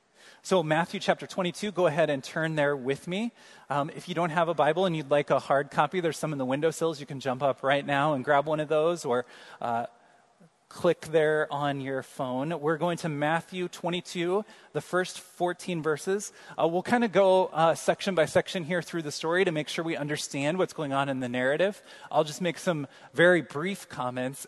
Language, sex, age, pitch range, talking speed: English, male, 30-49, 145-180 Hz, 210 wpm